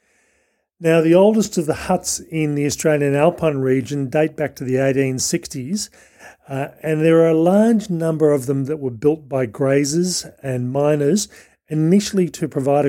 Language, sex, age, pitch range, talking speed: English, male, 40-59, 135-165 Hz, 160 wpm